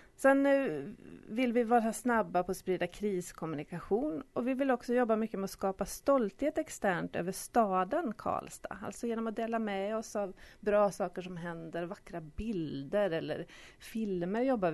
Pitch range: 180-230 Hz